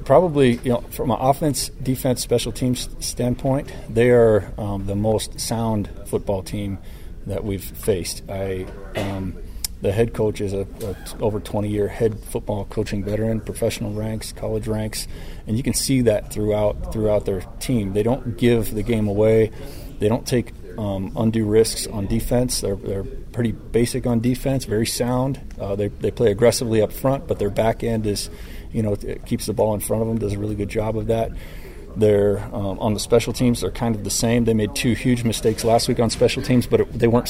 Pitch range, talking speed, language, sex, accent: 100-120 Hz, 200 wpm, English, male, American